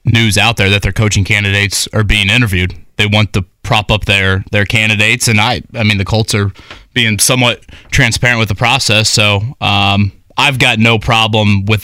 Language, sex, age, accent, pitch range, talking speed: English, male, 20-39, American, 105-130 Hz, 195 wpm